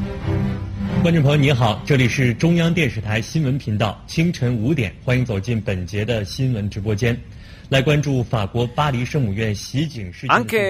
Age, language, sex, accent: 30-49, Italian, male, native